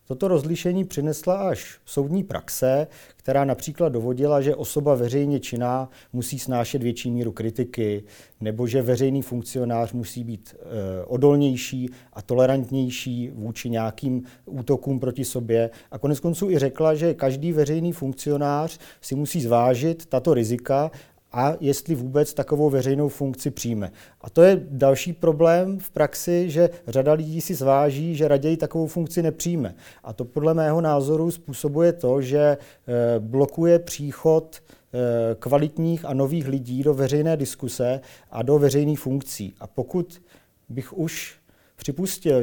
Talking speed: 135 wpm